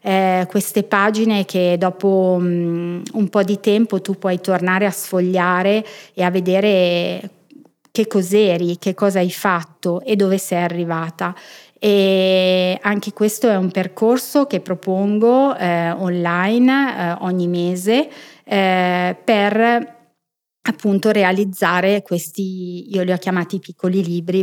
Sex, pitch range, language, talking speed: female, 175-200 Hz, Italian, 125 wpm